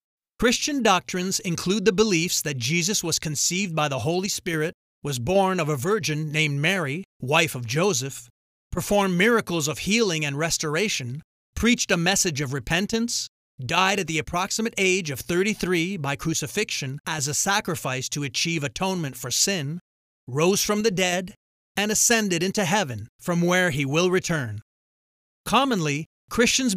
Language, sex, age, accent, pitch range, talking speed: English, male, 40-59, American, 150-195 Hz, 150 wpm